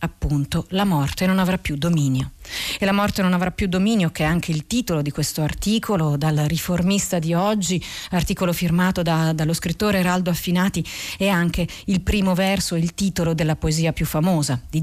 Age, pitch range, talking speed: 40-59, 160-200 Hz, 180 wpm